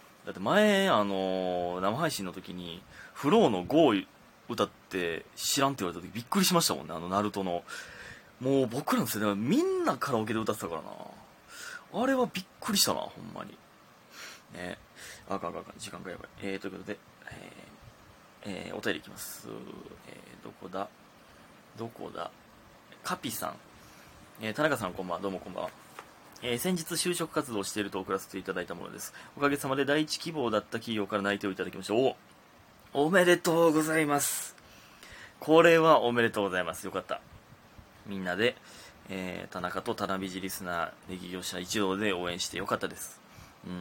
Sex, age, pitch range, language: male, 20-39, 95-145 Hz, Japanese